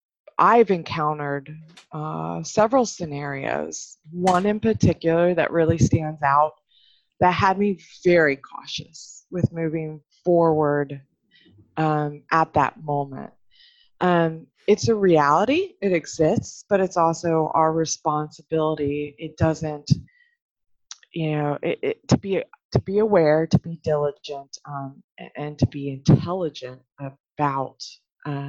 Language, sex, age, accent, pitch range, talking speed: English, female, 20-39, American, 145-185 Hz, 120 wpm